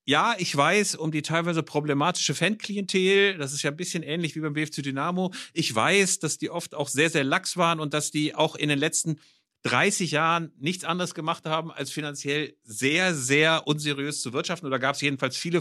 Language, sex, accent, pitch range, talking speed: German, male, German, 135-170 Hz, 205 wpm